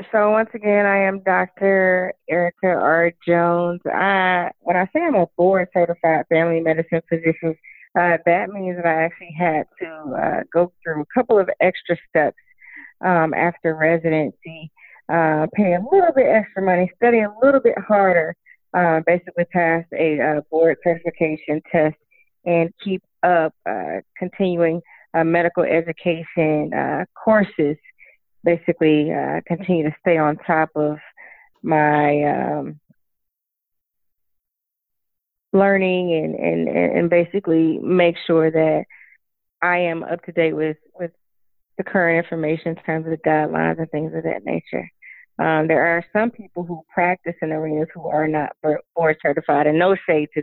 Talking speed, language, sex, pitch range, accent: 145 wpm, English, female, 160-180 Hz, American